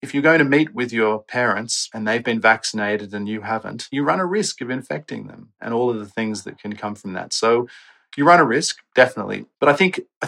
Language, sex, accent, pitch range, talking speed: English, male, Australian, 105-130 Hz, 245 wpm